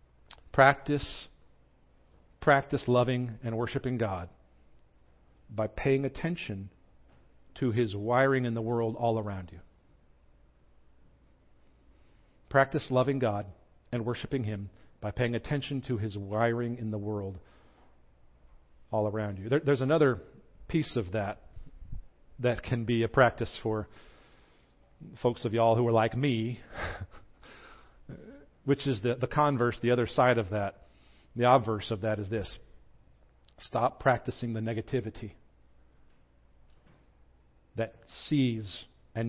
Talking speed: 120 wpm